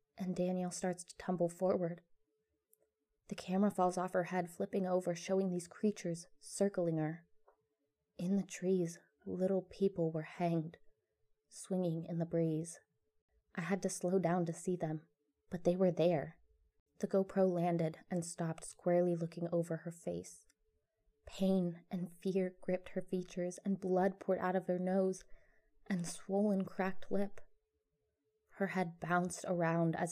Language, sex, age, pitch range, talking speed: English, female, 20-39, 165-185 Hz, 145 wpm